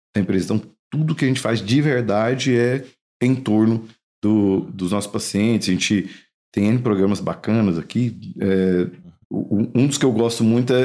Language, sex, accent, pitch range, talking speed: Portuguese, male, Brazilian, 100-125 Hz, 170 wpm